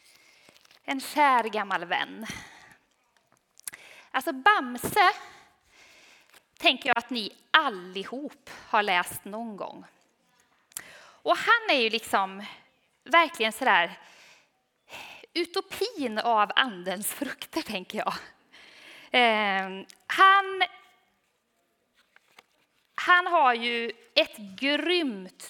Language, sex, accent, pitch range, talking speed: Swedish, female, native, 220-325 Hz, 80 wpm